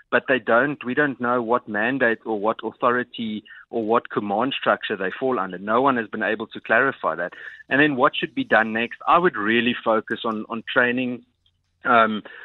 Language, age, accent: English, 20-39, South African